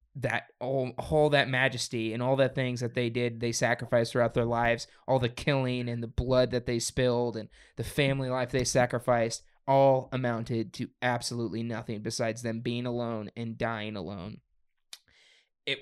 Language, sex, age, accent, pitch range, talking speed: English, male, 20-39, American, 115-130 Hz, 170 wpm